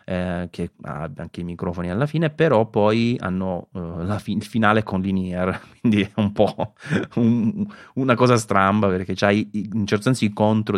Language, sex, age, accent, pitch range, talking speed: Italian, male, 30-49, native, 95-105 Hz, 175 wpm